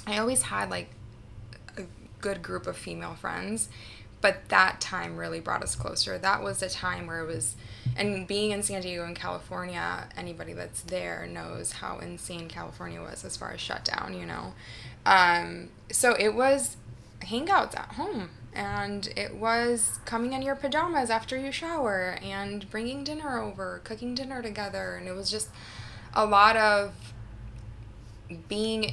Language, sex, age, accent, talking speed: English, female, 20-39, American, 160 wpm